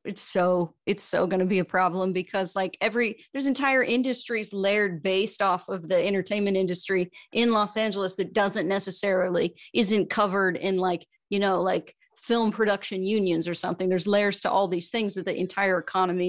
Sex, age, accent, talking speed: female, 30-49, American, 180 wpm